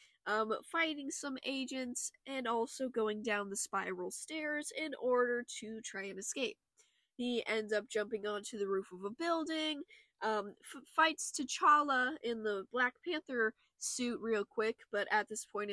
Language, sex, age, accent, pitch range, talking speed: English, female, 10-29, American, 215-295 Hz, 160 wpm